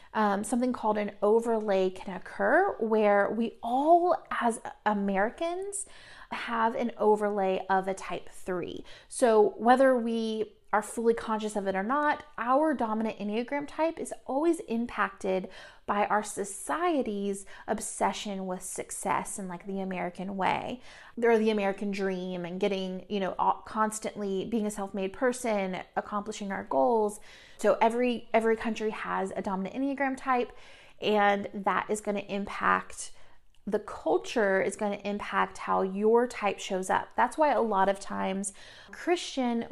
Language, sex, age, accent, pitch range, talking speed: English, female, 30-49, American, 195-235 Hz, 145 wpm